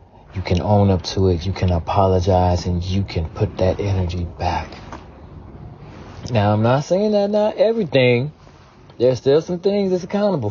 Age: 30-49